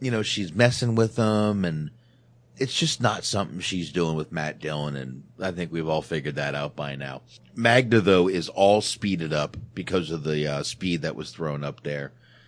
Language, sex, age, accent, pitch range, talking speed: English, male, 30-49, American, 85-120 Hz, 200 wpm